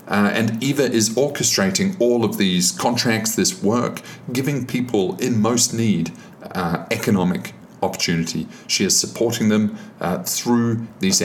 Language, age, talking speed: English, 40-59, 140 wpm